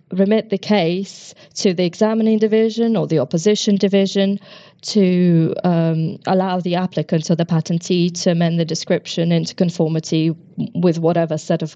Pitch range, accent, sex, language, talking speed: 165-195 Hz, British, female, English, 150 wpm